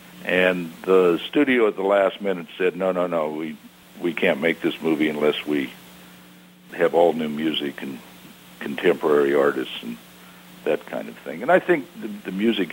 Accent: American